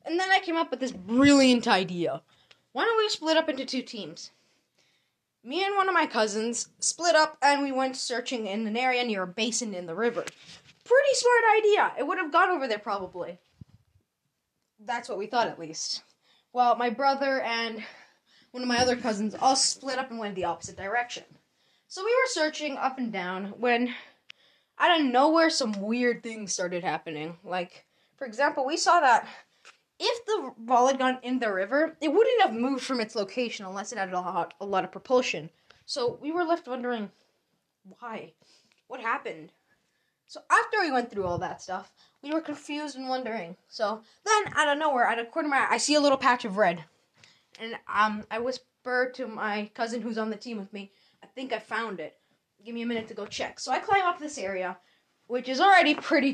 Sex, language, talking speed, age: female, English, 205 wpm, 20-39